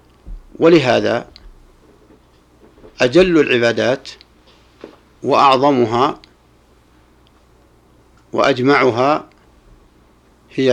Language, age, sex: Arabic, 60-79, male